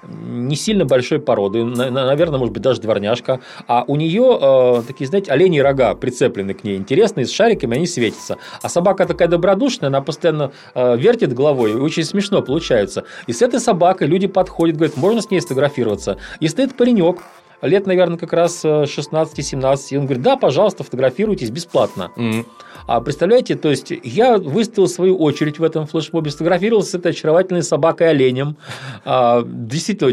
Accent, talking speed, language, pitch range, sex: native, 160 wpm, Russian, 135-185 Hz, male